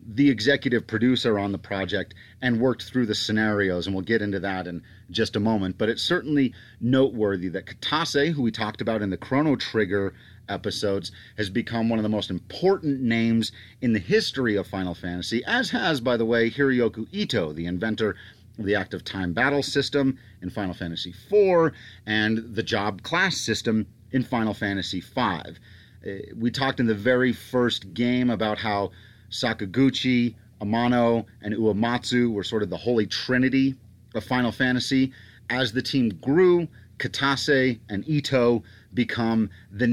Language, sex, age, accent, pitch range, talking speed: English, male, 30-49, American, 105-125 Hz, 160 wpm